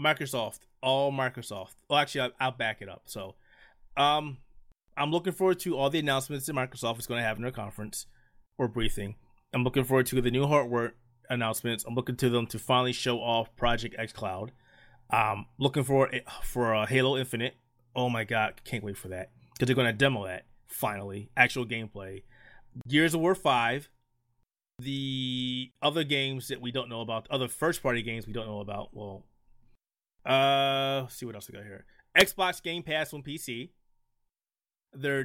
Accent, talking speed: American, 185 wpm